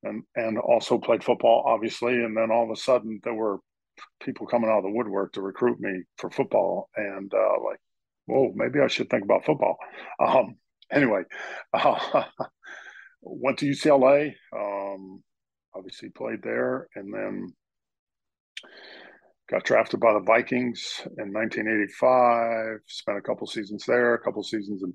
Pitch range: 100-115 Hz